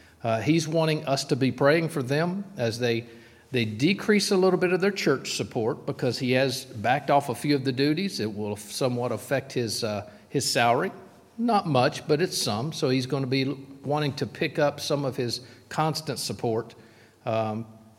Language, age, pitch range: English, 50-69, 115-140 Hz